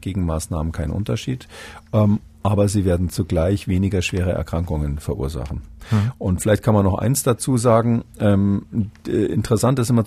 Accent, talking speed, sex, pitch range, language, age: German, 130 wpm, male, 90-115 Hz, German, 40-59